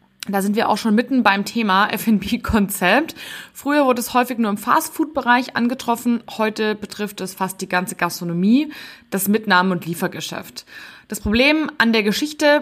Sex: female